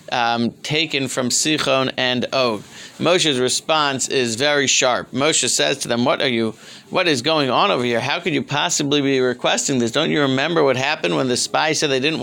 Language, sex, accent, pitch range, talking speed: English, male, American, 130-160 Hz, 205 wpm